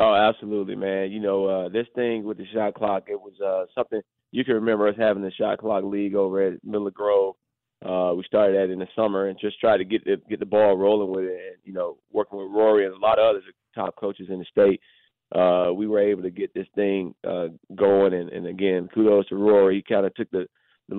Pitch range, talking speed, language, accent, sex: 95-110 Hz, 245 wpm, English, American, male